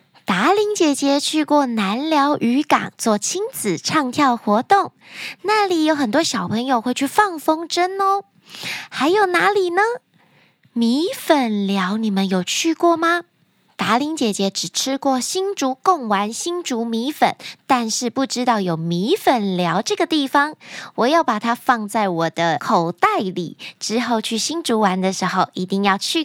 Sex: female